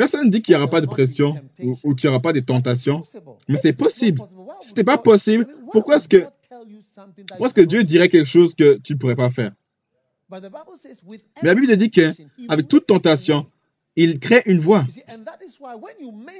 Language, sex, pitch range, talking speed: French, male, 155-210 Hz, 190 wpm